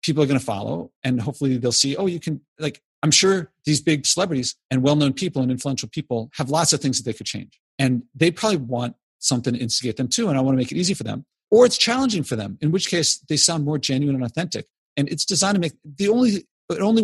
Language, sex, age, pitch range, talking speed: English, male, 40-59, 125-160 Hz, 255 wpm